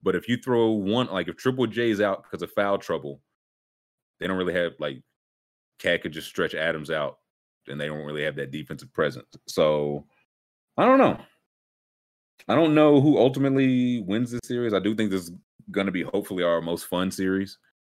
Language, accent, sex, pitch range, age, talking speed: English, American, male, 85-140 Hz, 30-49, 195 wpm